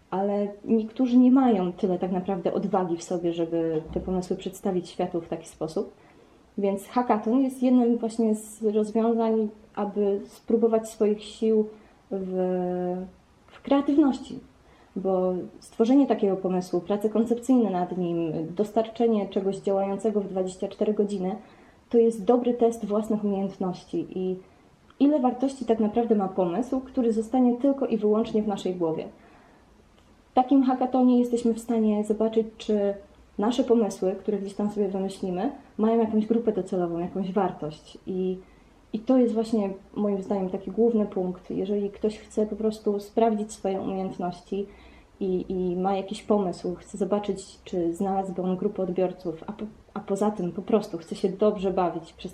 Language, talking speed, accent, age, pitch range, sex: Polish, 150 wpm, native, 20-39, 185-225 Hz, female